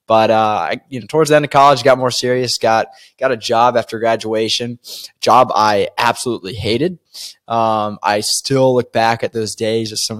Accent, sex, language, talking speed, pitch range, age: American, male, English, 200 wpm, 110-125 Hz, 20-39